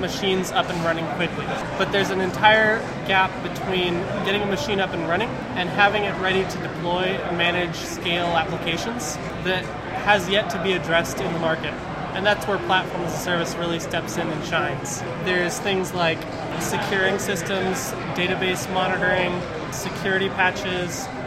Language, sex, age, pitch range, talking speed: English, male, 20-39, 170-190 Hz, 150 wpm